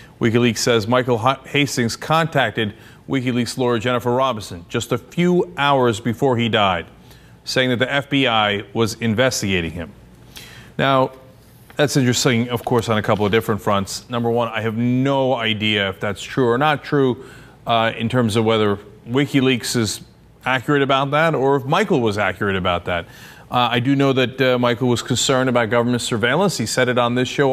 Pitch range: 115-140 Hz